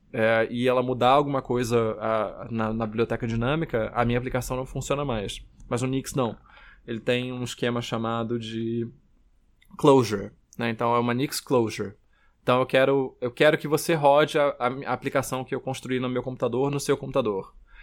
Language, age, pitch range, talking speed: Portuguese, 20-39, 115-140 Hz, 175 wpm